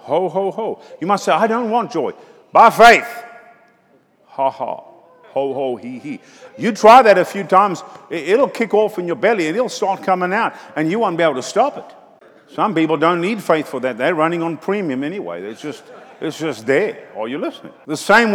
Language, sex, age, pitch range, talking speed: English, male, 50-69, 165-235 Hz, 215 wpm